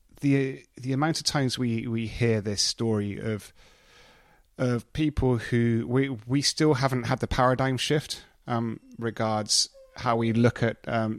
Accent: British